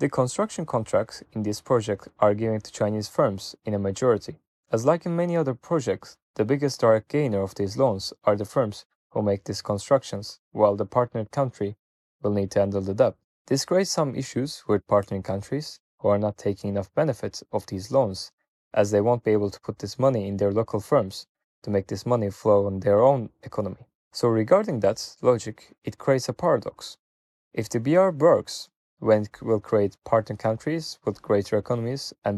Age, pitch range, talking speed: 20-39, 100-130 Hz, 195 wpm